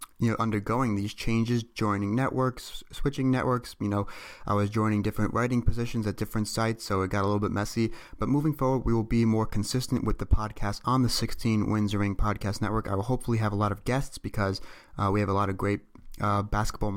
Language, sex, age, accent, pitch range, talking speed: English, male, 30-49, American, 100-120 Hz, 225 wpm